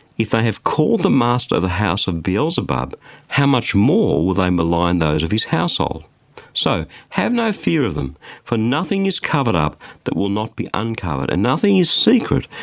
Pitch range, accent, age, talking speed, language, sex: 95-150 Hz, Australian, 50-69, 195 wpm, English, male